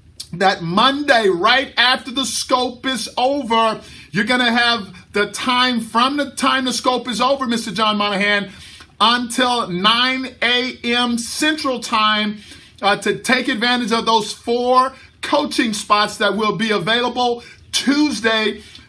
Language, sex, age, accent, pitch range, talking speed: English, male, 50-69, American, 205-255 Hz, 135 wpm